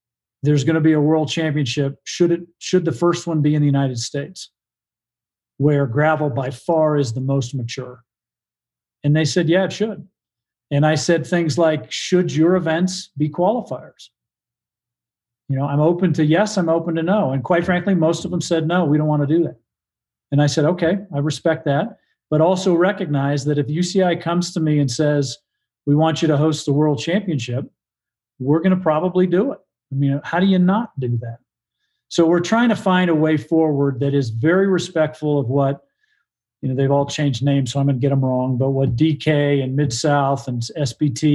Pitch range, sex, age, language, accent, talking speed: 140-170 Hz, male, 40-59, English, American, 205 wpm